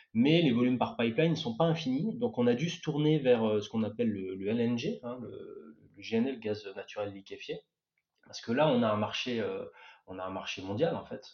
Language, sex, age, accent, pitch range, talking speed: French, male, 20-39, French, 105-140 Hz, 240 wpm